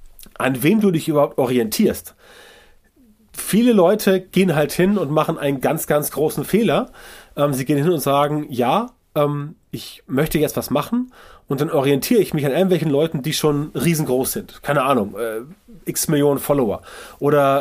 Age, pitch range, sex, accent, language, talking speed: 30-49, 135-185 Hz, male, German, German, 170 wpm